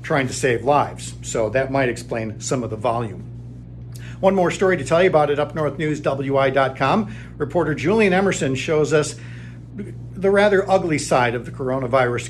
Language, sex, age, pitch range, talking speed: English, male, 50-69, 120-165 Hz, 160 wpm